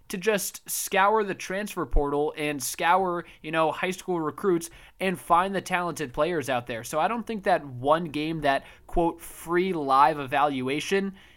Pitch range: 145-185 Hz